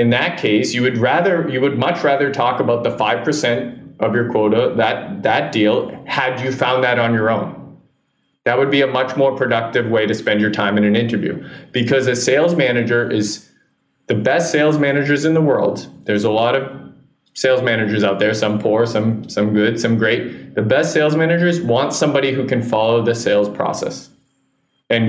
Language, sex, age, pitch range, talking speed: English, male, 20-39, 110-140 Hz, 195 wpm